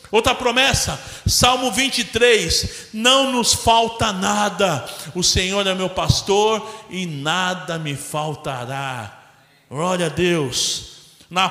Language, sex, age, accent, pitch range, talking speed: Portuguese, male, 50-69, Brazilian, 135-195 Hz, 110 wpm